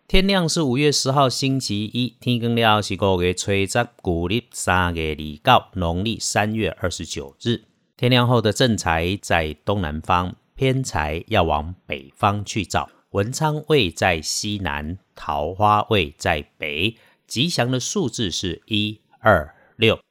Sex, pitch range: male, 85-115 Hz